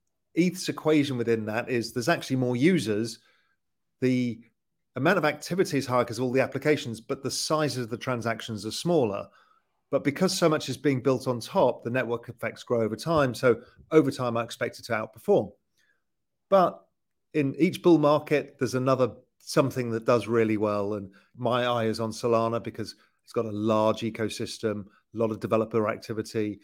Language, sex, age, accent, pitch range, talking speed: English, male, 40-59, British, 115-145 Hz, 180 wpm